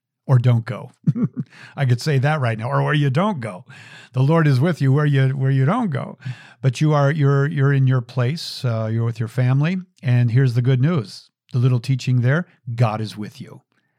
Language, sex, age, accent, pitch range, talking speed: English, male, 50-69, American, 115-135 Hz, 220 wpm